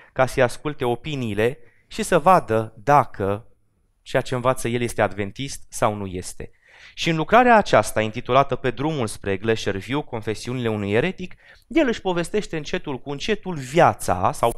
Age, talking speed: 20-39, 155 wpm